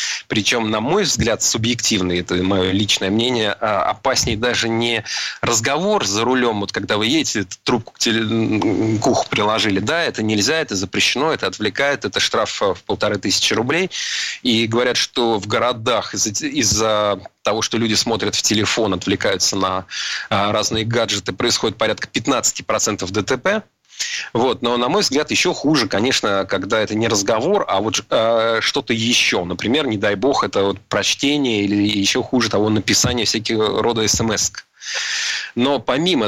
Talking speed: 150 wpm